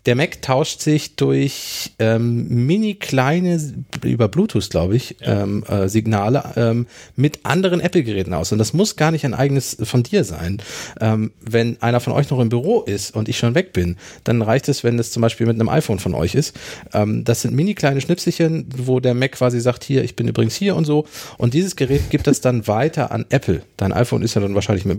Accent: German